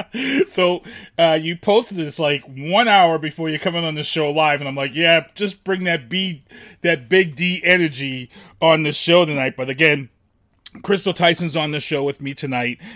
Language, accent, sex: English, American, male